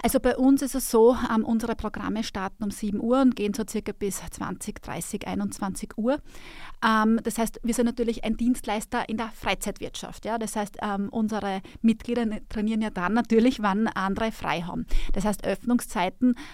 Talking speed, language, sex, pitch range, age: 180 wpm, German, female, 200-230 Hz, 30-49